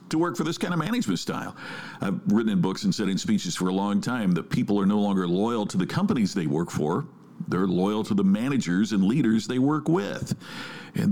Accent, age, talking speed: American, 50-69, 230 wpm